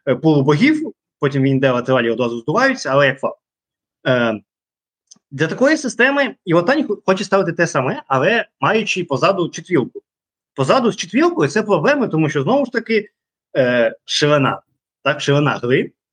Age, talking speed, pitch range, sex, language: 20-39, 140 wpm, 145-210 Hz, male, Ukrainian